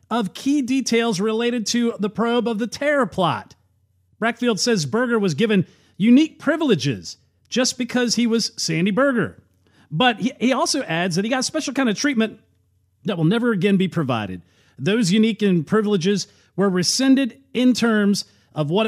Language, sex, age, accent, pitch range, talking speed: English, male, 40-59, American, 165-230 Hz, 160 wpm